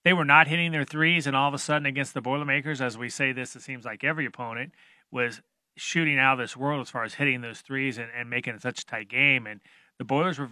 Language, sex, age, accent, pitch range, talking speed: English, male, 30-49, American, 120-145 Hz, 270 wpm